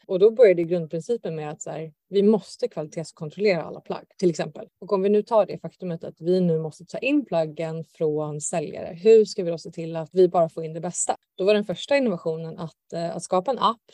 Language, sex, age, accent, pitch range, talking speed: Swedish, female, 20-39, native, 160-215 Hz, 230 wpm